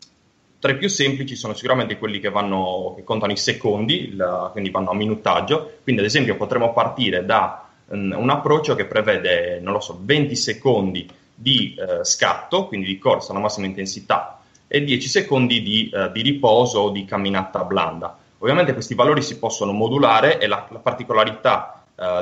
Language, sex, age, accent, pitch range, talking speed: Italian, male, 20-39, native, 100-130 Hz, 175 wpm